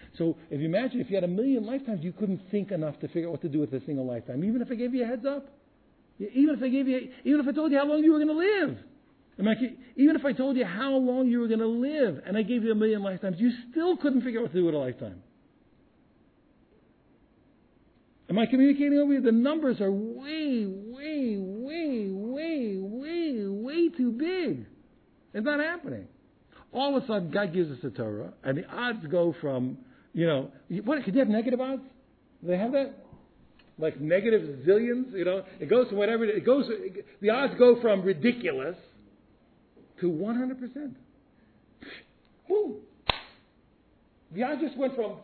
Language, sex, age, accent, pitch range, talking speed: English, male, 50-69, American, 165-260 Hz, 195 wpm